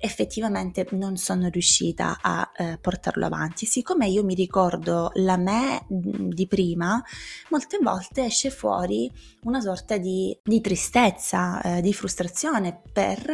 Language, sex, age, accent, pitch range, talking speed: Italian, female, 20-39, native, 180-240 Hz, 130 wpm